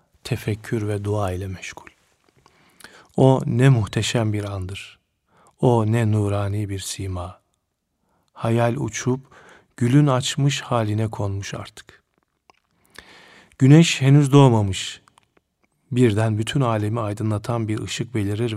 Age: 40-59